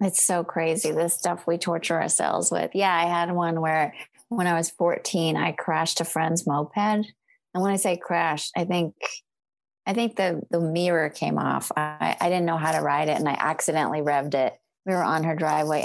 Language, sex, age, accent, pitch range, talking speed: English, female, 30-49, American, 160-185 Hz, 210 wpm